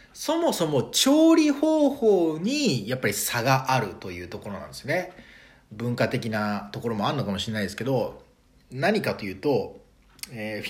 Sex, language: male, Japanese